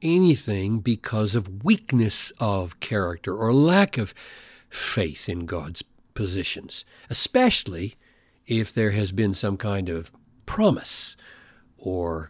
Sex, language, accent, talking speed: male, English, American, 110 wpm